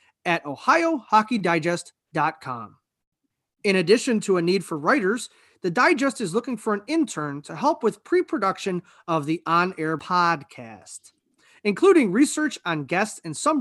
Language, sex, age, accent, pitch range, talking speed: English, male, 30-49, American, 165-245 Hz, 130 wpm